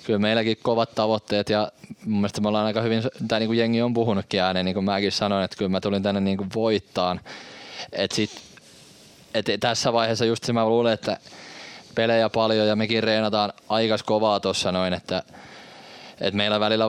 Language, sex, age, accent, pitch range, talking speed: Finnish, male, 20-39, native, 95-110 Hz, 180 wpm